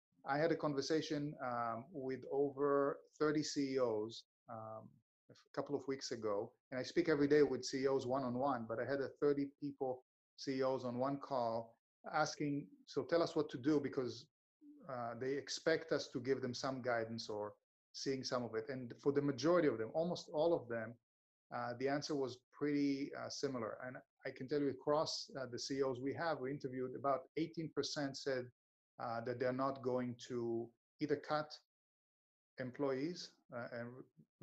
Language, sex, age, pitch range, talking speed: English, male, 30-49, 125-150 Hz, 175 wpm